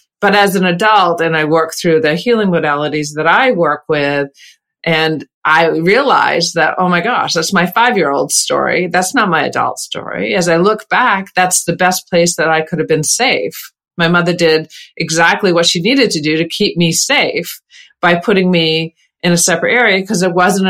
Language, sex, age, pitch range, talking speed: English, female, 40-59, 155-185 Hz, 195 wpm